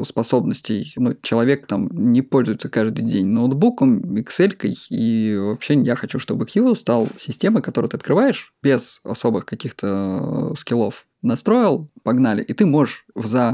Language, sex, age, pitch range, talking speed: Russian, male, 20-39, 120-150 Hz, 140 wpm